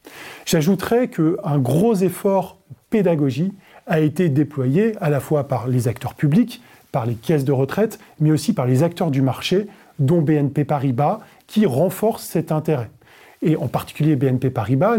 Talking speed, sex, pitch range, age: 155 wpm, male, 135-185 Hz, 20-39